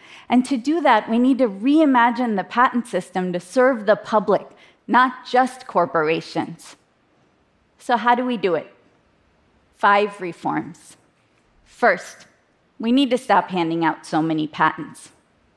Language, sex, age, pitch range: Japanese, female, 30-49, 190-275 Hz